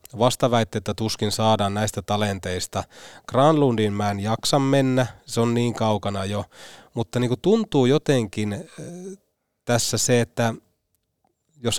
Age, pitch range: 30-49, 100-135 Hz